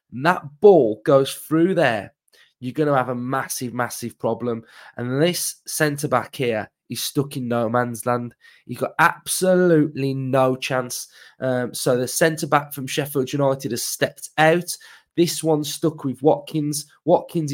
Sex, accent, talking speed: male, British, 150 wpm